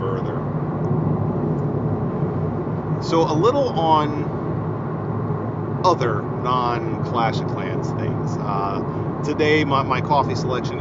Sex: male